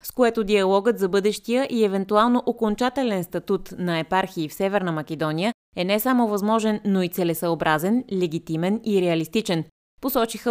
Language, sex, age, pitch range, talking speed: Bulgarian, female, 20-39, 175-225 Hz, 145 wpm